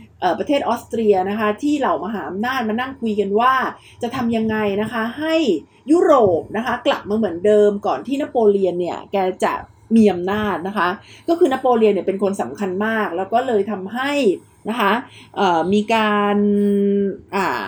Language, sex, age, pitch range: Thai, female, 30-49, 195-250 Hz